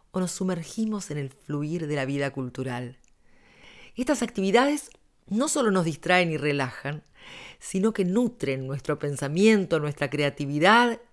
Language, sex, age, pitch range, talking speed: Spanish, female, 40-59, 145-210 Hz, 135 wpm